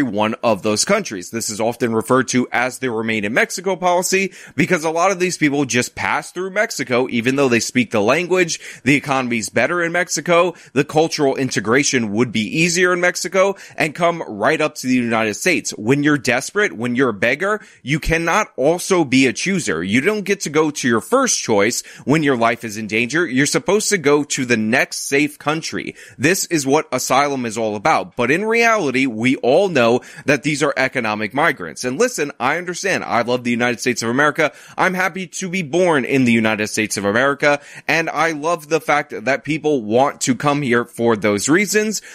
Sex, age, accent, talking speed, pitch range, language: male, 20-39, American, 205 wpm, 125-175 Hz, English